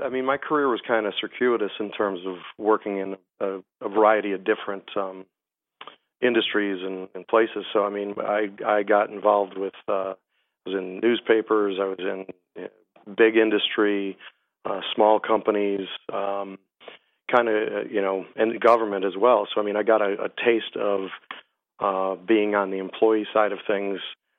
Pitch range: 95-110 Hz